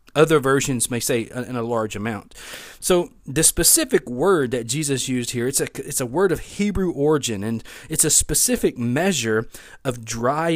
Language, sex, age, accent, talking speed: English, male, 40-59, American, 175 wpm